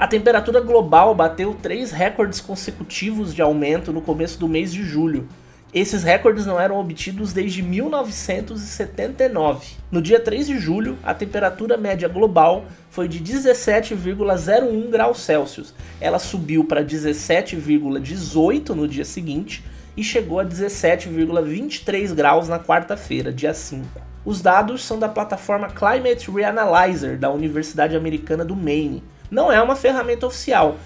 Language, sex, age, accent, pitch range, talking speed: Portuguese, male, 20-39, Brazilian, 160-215 Hz, 135 wpm